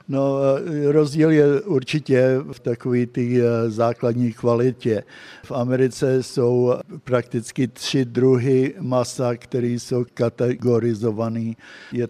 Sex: male